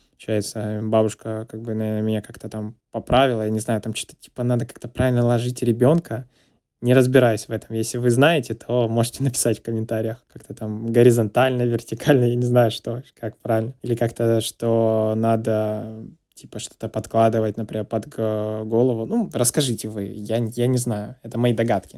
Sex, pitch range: male, 110-125 Hz